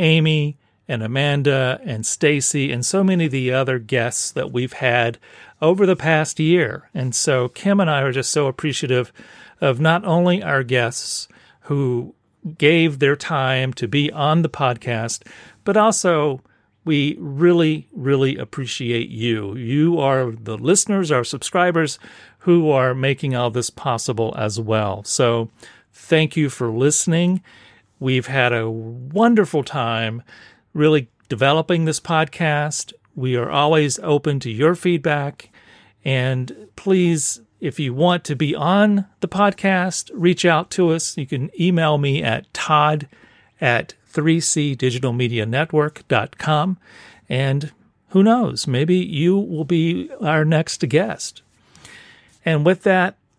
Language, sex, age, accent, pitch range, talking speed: English, male, 40-59, American, 130-170 Hz, 135 wpm